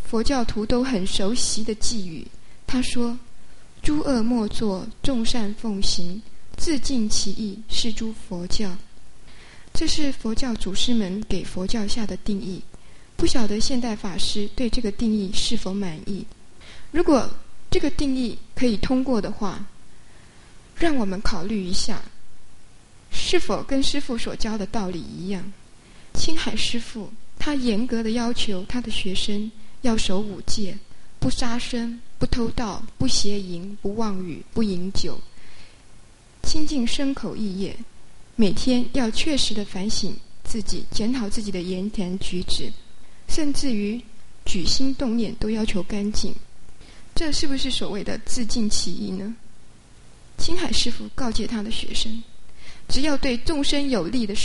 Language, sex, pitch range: English, female, 205-250 Hz